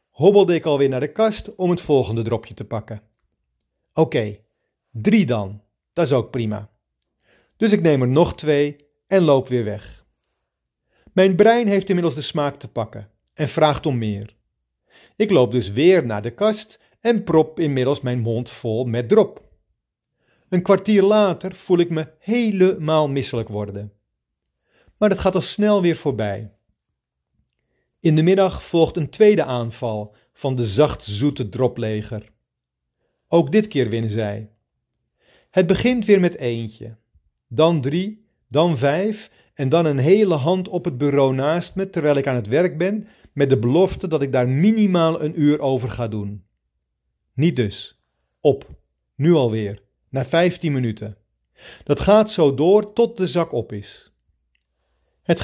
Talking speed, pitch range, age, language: 155 wpm, 110-175 Hz, 40-59, Dutch